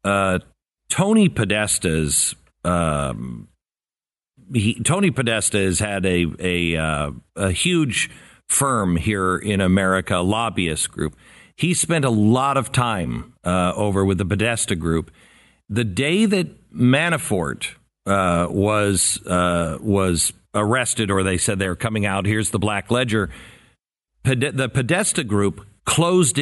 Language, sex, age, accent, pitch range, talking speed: English, male, 50-69, American, 100-135 Hz, 130 wpm